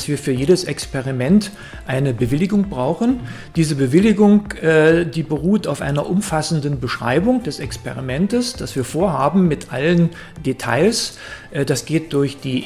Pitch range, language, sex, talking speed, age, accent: 130-170 Hz, German, male, 140 wpm, 40-59, German